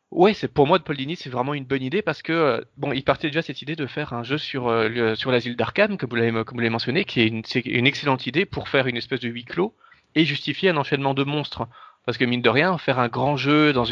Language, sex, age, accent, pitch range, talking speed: French, male, 30-49, French, 120-150 Hz, 275 wpm